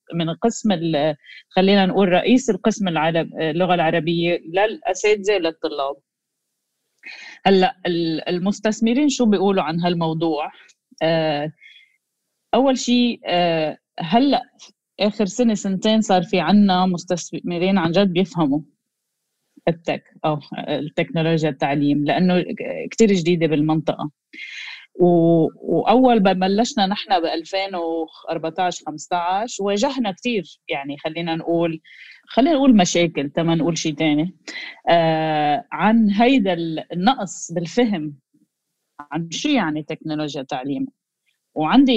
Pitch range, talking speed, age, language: 160-205 Hz, 95 wpm, 30-49, Arabic